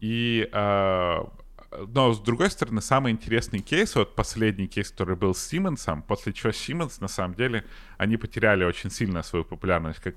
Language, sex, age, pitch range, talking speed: Ukrainian, male, 30-49, 90-115 Hz, 165 wpm